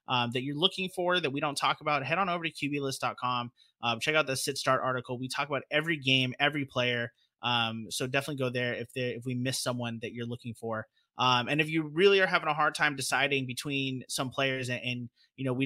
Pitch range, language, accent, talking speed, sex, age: 120-145 Hz, English, American, 240 wpm, male, 20-39